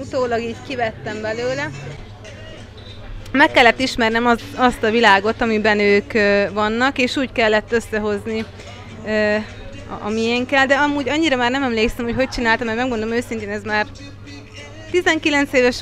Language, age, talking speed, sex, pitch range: Hungarian, 30-49, 150 wpm, female, 210-250 Hz